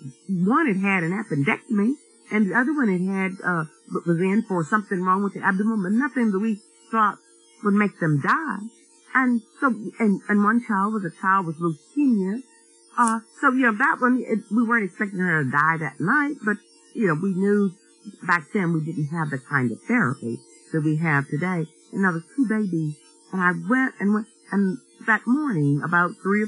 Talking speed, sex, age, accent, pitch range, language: 200 wpm, female, 50-69, American, 155-220 Hz, English